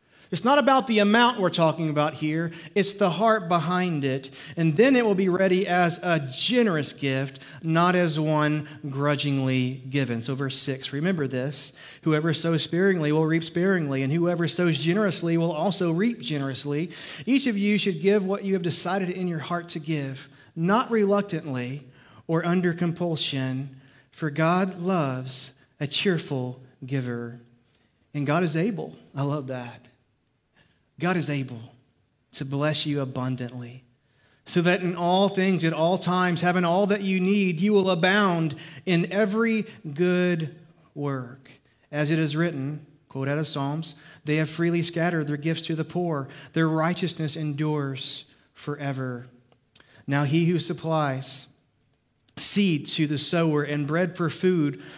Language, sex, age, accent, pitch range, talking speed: English, male, 40-59, American, 140-180 Hz, 155 wpm